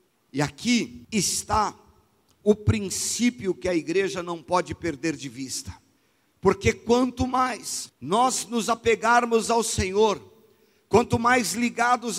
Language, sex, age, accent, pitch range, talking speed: Portuguese, male, 50-69, Brazilian, 160-200 Hz, 120 wpm